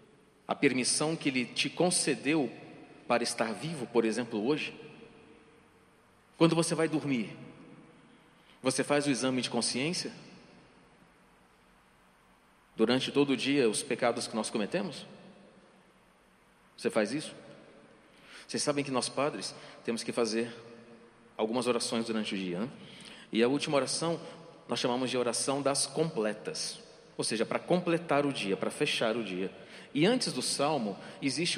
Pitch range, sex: 115-150 Hz, male